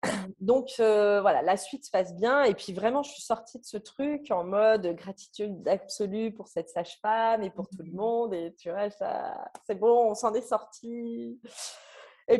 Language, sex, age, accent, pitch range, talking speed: French, female, 30-49, French, 180-260 Hz, 195 wpm